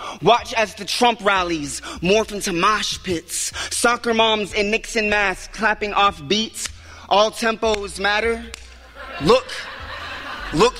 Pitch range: 190-230 Hz